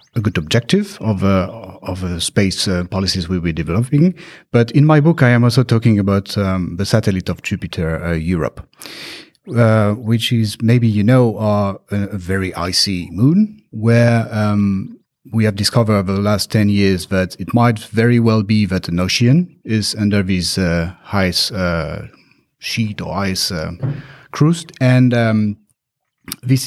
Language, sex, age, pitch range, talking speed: English, male, 30-49, 95-120 Hz, 165 wpm